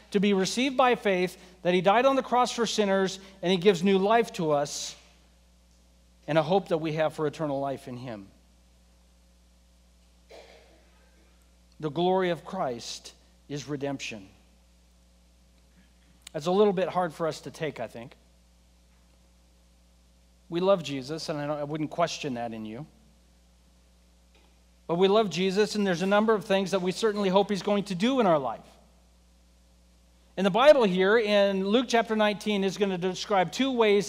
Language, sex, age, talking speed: English, male, 50-69, 165 wpm